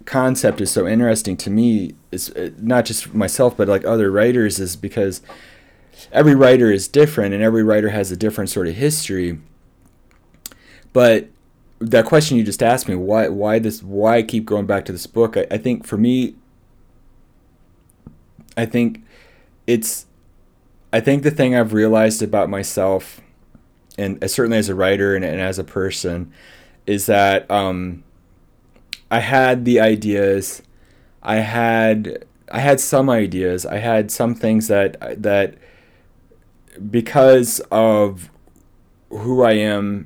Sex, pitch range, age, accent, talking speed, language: male, 95-115 Hz, 20-39, American, 145 wpm, English